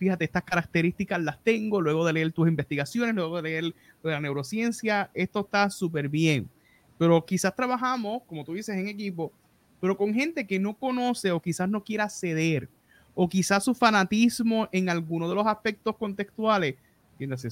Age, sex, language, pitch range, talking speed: 30-49, male, Spanish, 155-200 Hz, 170 wpm